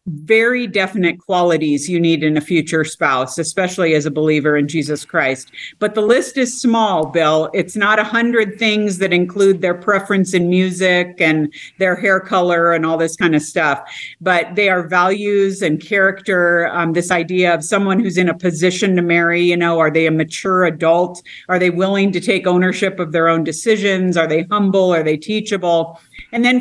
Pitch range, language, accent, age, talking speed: 165-210 Hz, English, American, 50-69, 190 wpm